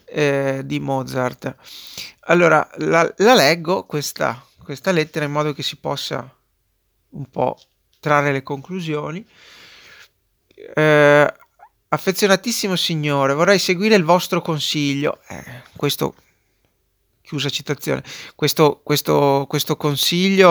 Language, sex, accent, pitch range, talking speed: Italian, male, native, 140-180 Hz, 100 wpm